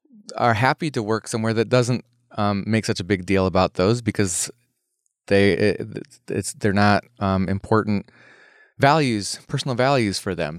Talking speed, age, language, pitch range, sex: 170 wpm, 20-39, English, 105-125 Hz, male